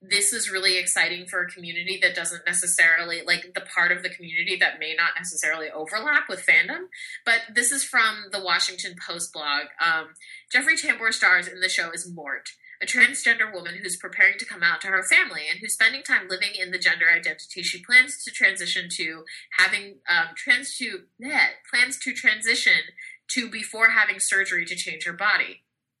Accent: American